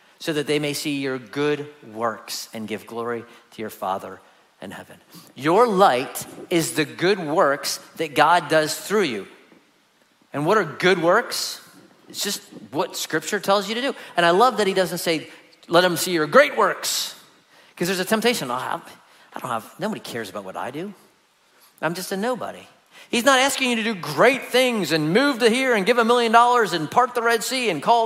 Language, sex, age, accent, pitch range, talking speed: English, male, 40-59, American, 170-265 Hz, 205 wpm